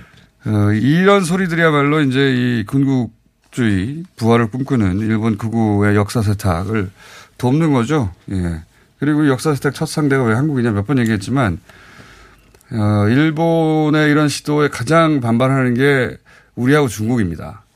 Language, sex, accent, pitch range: Korean, male, native, 110-165 Hz